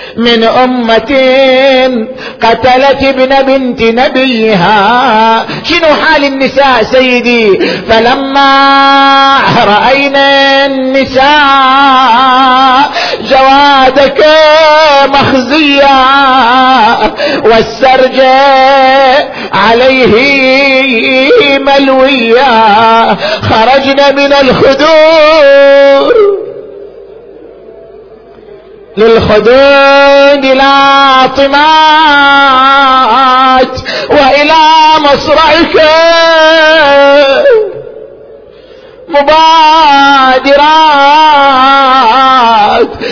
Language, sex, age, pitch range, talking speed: Arabic, male, 50-69, 260-290 Hz, 40 wpm